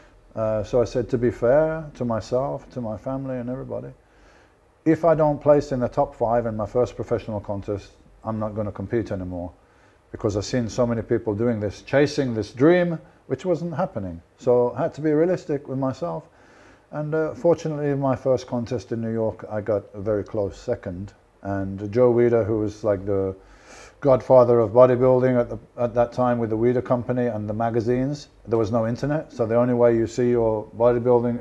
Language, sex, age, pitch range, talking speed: Hungarian, male, 50-69, 105-130 Hz, 200 wpm